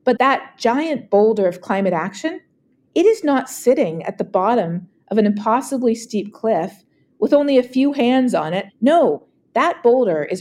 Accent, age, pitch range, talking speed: American, 40-59, 195-260 Hz, 175 wpm